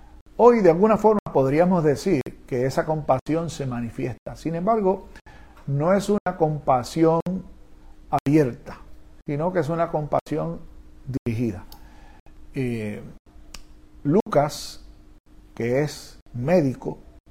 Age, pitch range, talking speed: 50-69, 120-150 Hz, 100 wpm